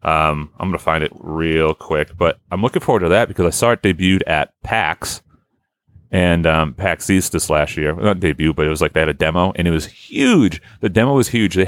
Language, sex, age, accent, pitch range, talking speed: English, male, 30-49, American, 85-110 Hz, 235 wpm